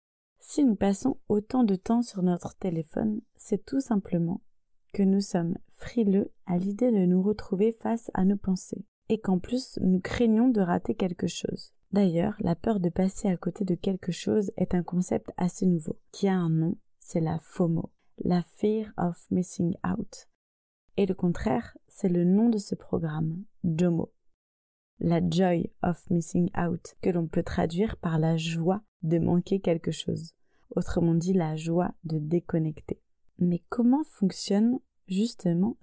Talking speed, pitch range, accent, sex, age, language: 160 wpm, 170-215 Hz, French, female, 30-49, French